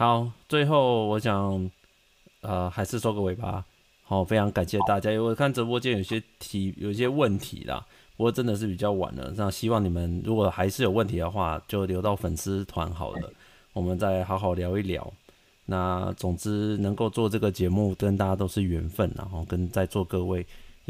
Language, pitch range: Chinese, 90-110 Hz